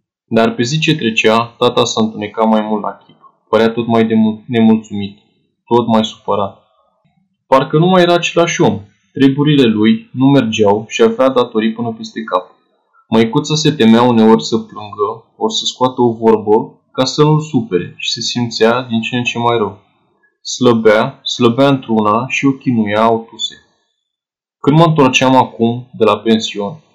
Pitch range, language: 110-135 Hz, Romanian